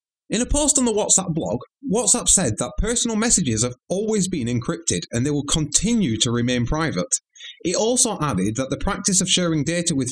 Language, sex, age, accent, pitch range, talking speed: English, male, 30-49, British, 120-185 Hz, 195 wpm